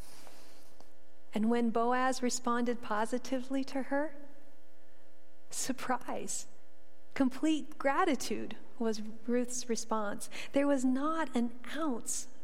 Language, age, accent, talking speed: English, 40-59, American, 85 wpm